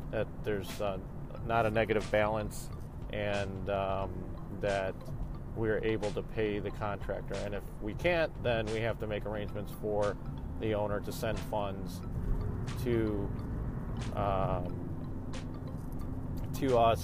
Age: 40-59